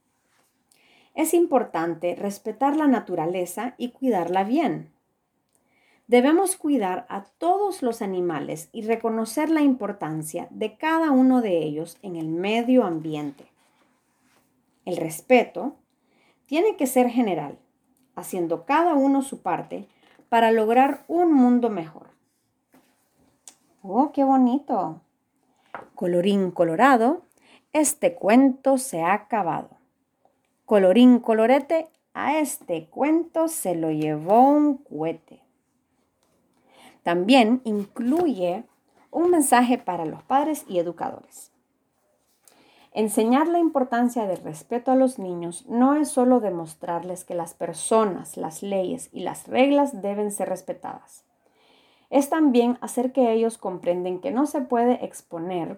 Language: English